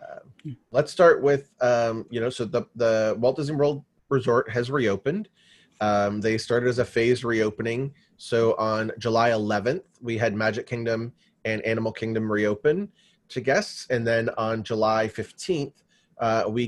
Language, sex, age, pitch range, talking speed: English, male, 30-49, 110-135 Hz, 160 wpm